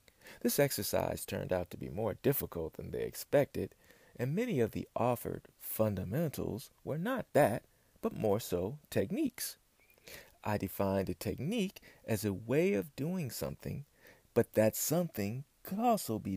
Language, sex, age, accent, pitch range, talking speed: English, male, 40-59, American, 95-140 Hz, 145 wpm